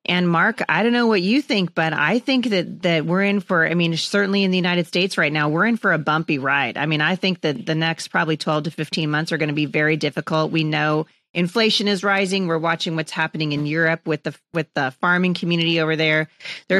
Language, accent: English, American